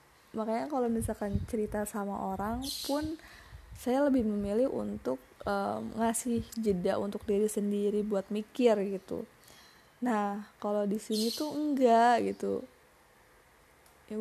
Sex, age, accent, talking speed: female, 20-39, native, 120 wpm